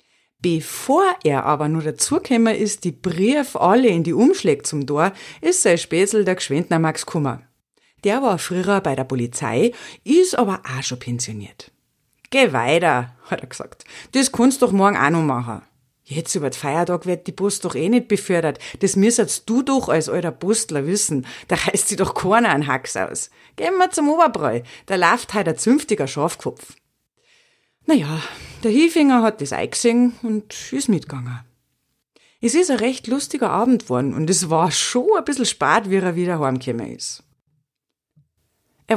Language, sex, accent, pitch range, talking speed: German, female, German, 145-240 Hz, 170 wpm